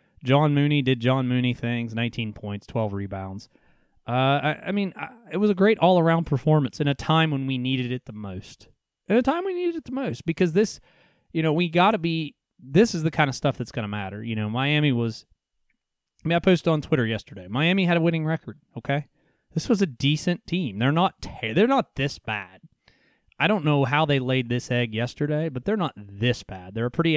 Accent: American